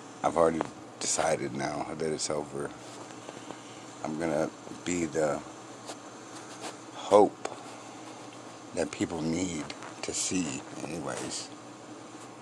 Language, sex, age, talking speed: English, male, 60-79, 90 wpm